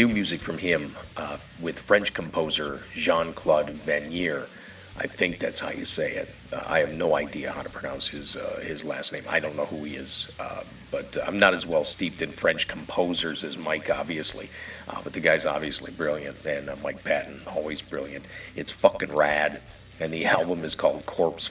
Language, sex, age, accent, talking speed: English, male, 50-69, American, 195 wpm